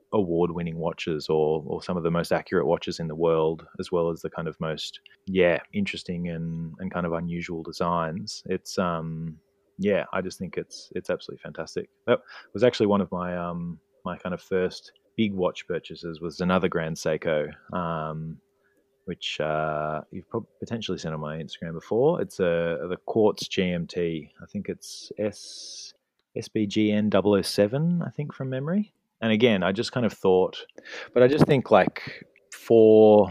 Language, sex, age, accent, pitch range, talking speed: English, male, 30-49, Australian, 85-100 Hz, 170 wpm